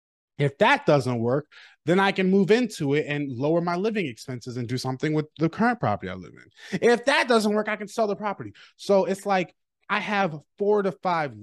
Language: English